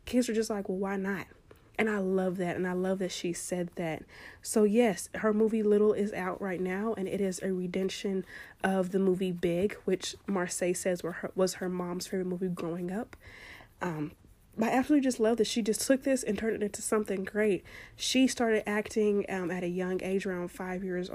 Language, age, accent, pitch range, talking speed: English, 30-49, American, 180-215 Hz, 215 wpm